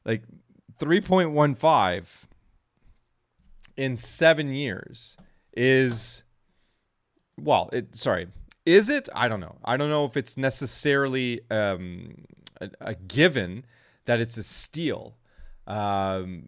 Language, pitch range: English, 115-145 Hz